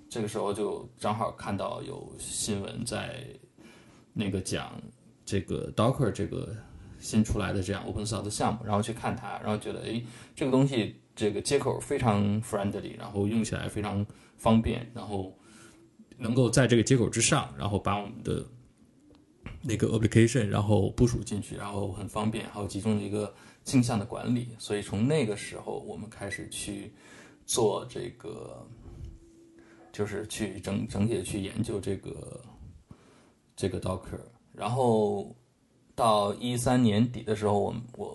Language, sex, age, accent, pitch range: Chinese, male, 20-39, native, 105-120 Hz